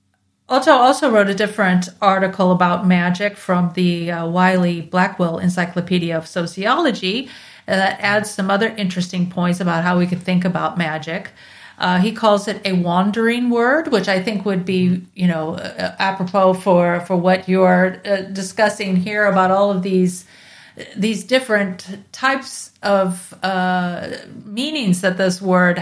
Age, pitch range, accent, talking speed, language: 40-59, 180-215 Hz, American, 155 wpm, English